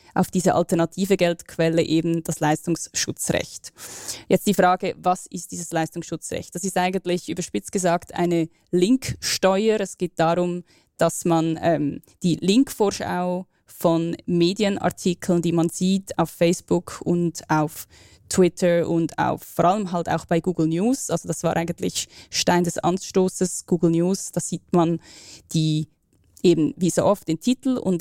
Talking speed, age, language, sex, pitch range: 145 wpm, 20-39, German, female, 165-190 Hz